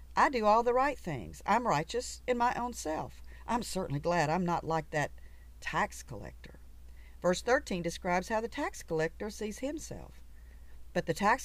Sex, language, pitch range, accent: female, English, 155-220 Hz, American